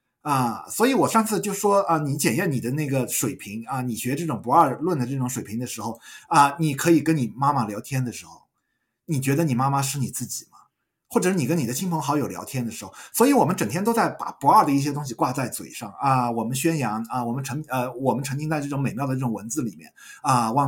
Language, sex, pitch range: Chinese, male, 125-175 Hz